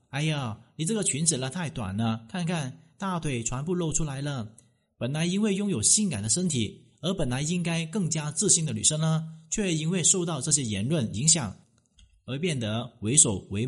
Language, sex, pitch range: Chinese, male, 115-165 Hz